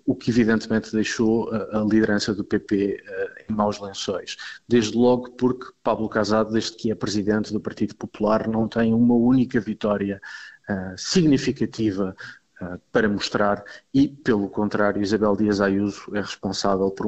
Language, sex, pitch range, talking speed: Portuguese, male, 105-120 Hz, 140 wpm